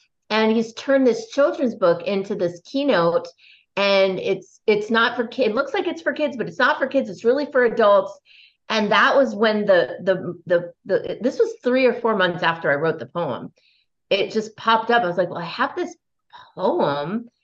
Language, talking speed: English, 210 wpm